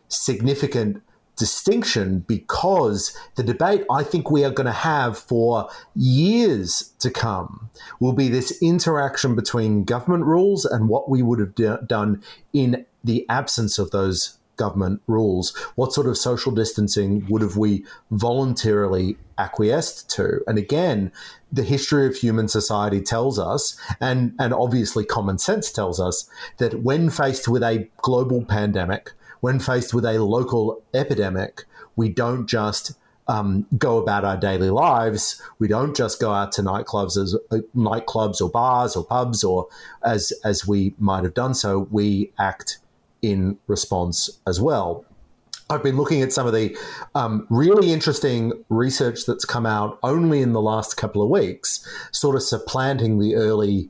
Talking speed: 155 wpm